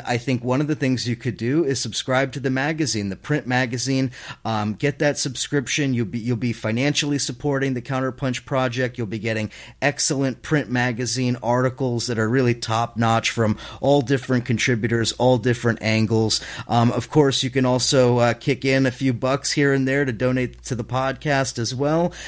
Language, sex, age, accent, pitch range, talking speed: English, male, 30-49, American, 115-135 Hz, 190 wpm